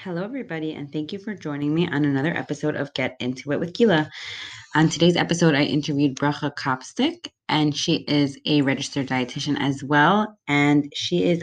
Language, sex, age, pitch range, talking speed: English, female, 20-39, 140-165 Hz, 185 wpm